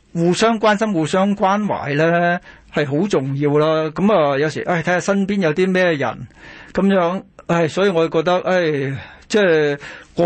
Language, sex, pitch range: Chinese, male, 145-185 Hz